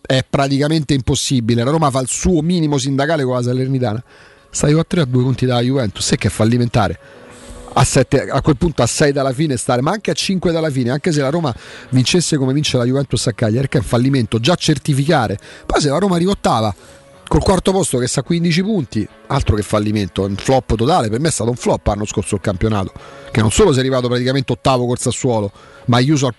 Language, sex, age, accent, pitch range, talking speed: Italian, male, 40-59, native, 120-170 Hz, 225 wpm